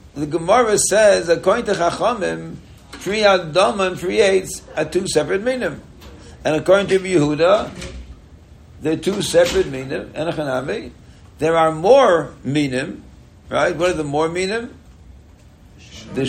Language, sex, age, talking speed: English, male, 60-79, 130 wpm